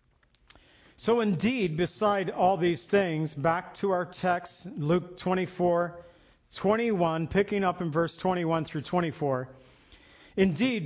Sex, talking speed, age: male, 115 wpm, 50-69